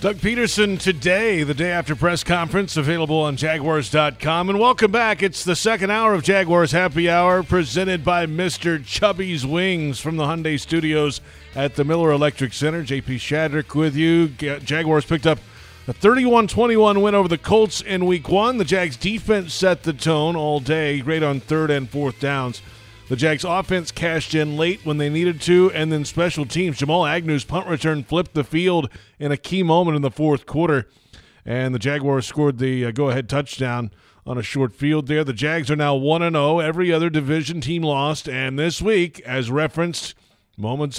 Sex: male